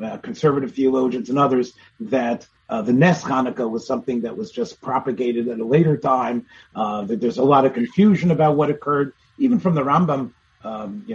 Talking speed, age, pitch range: 190 wpm, 40-59, 120-180 Hz